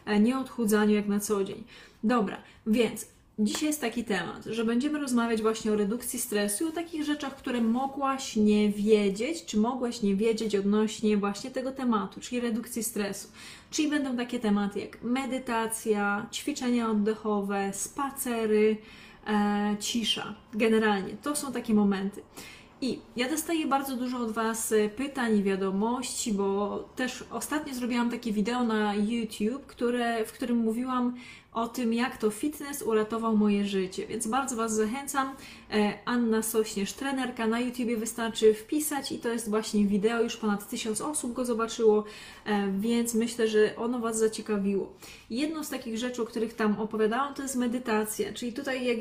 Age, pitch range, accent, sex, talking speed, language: 20-39, 215-250 Hz, native, female, 155 wpm, Polish